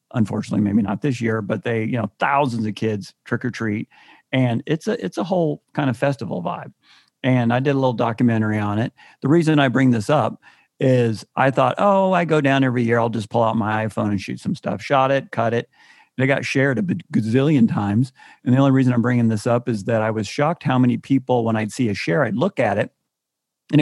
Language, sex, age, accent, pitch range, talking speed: English, male, 50-69, American, 115-135 Hz, 235 wpm